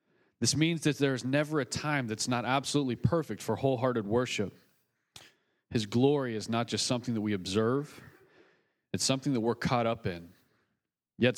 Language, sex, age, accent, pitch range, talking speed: English, male, 40-59, American, 115-140 Hz, 170 wpm